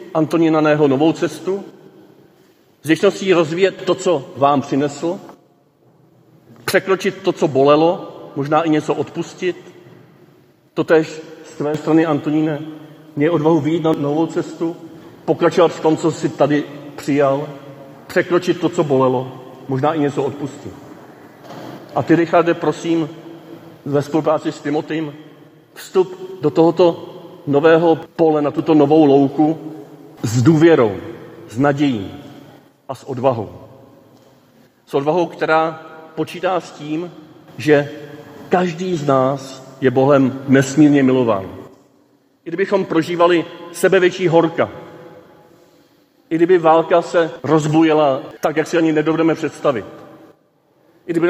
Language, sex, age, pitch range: Czech, male, 40-59, 145-170 Hz